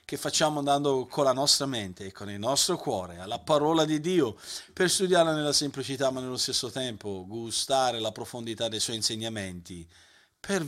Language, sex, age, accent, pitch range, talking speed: Italian, male, 40-59, native, 120-160 Hz, 175 wpm